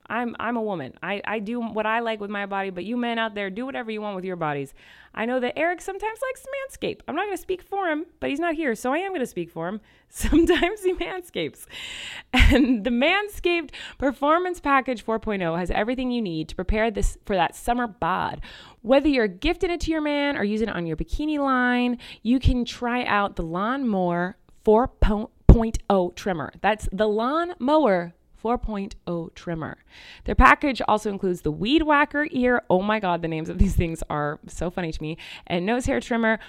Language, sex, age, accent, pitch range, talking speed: English, female, 20-39, American, 185-270 Hz, 210 wpm